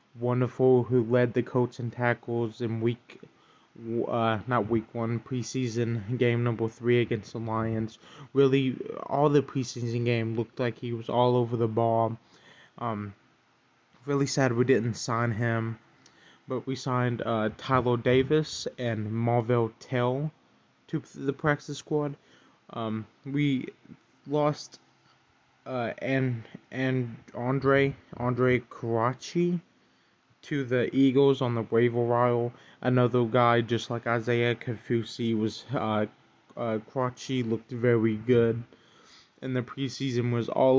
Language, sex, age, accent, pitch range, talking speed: English, male, 20-39, American, 115-130 Hz, 130 wpm